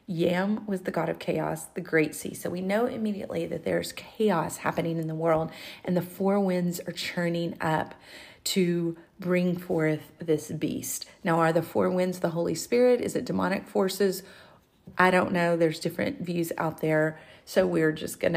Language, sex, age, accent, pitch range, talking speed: English, female, 40-59, American, 165-195 Hz, 185 wpm